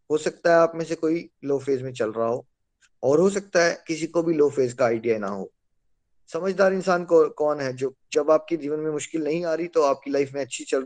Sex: male